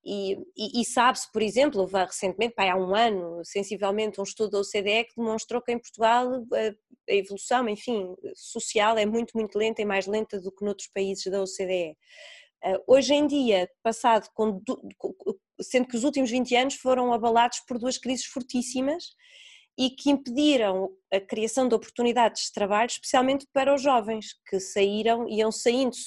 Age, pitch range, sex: 20-39, 210-280 Hz, female